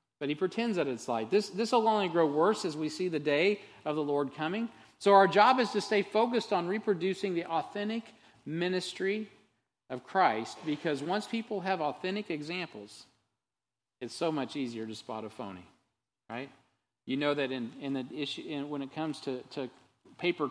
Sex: male